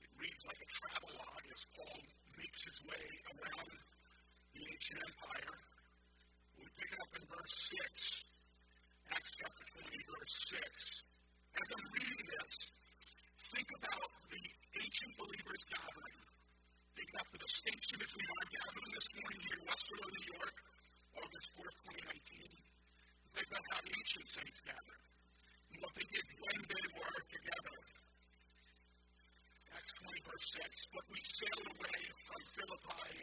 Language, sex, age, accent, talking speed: English, female, 50-69, American, 135 wpm